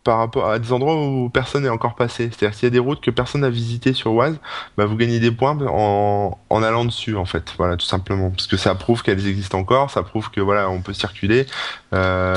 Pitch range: 95-125 Hz